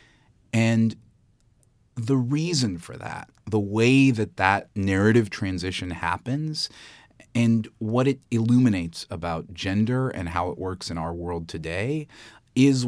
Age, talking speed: 30-49, 125 wpm